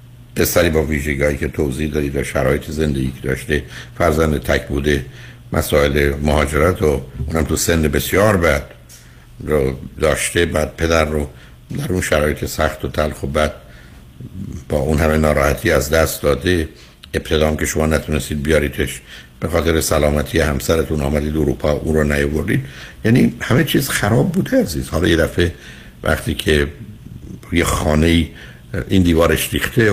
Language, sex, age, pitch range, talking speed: Persian, male, 60-79, 70-80 Hz, 140 wpm